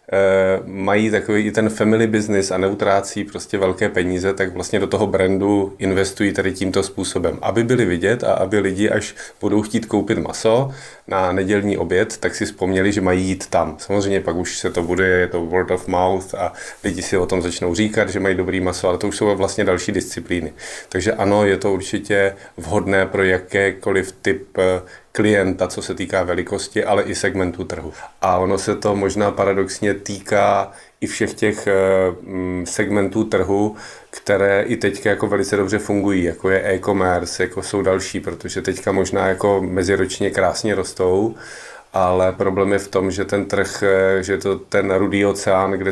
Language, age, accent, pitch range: Czech, 30-49, native, 95-100 Hz